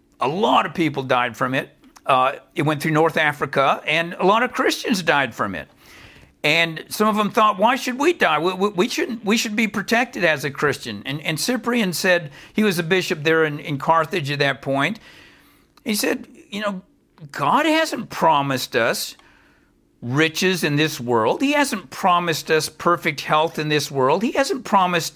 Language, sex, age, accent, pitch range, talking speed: English, male, 50-69, American, 150-210 Hz, 195 wpm